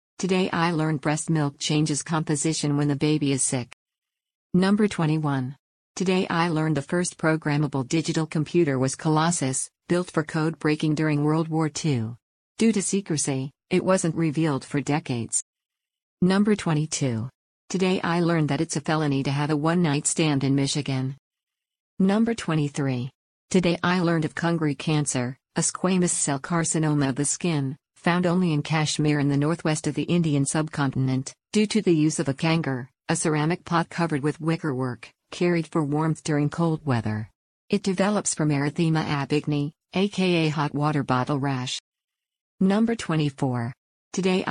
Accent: American